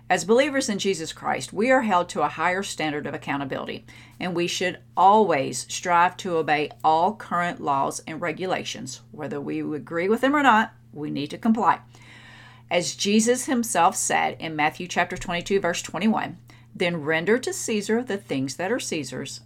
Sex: female